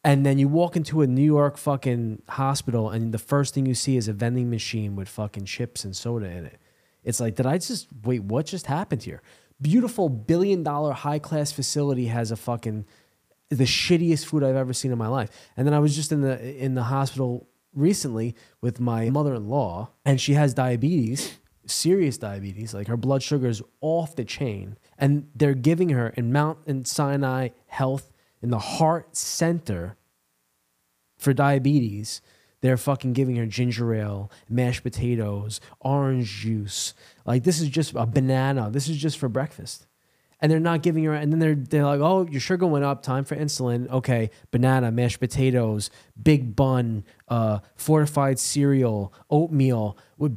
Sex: male